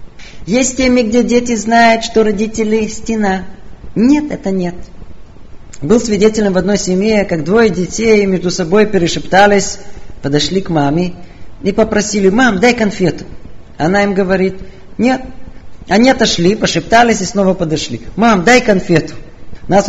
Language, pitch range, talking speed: Russian, 175-235 Hz, 135 wpm